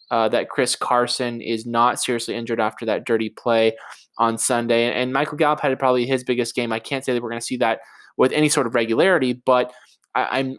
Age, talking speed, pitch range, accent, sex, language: 20-39, 220 wpm, 120-145 Hz, American, male, English